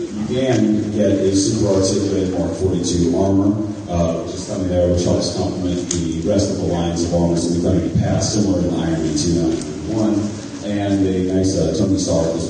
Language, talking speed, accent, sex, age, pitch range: English, 195 wpm, American, female, 30-49, 85-105 Hz